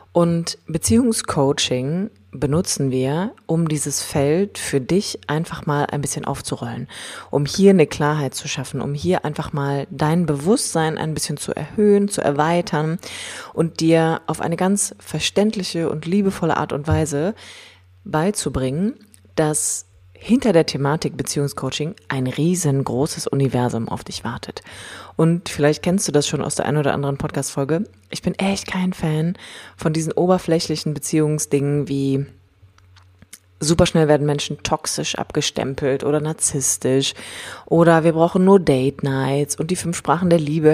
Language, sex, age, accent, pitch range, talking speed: German, female, 30-49, German, 140-170 Hz, 140 wpm